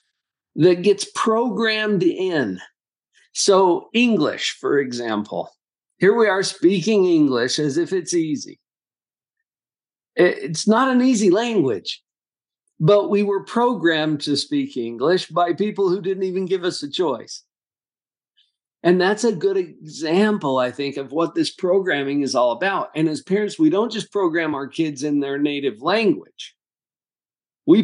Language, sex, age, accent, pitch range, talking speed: English, male, 50-69, American, 145-200 Hz, 140 wpm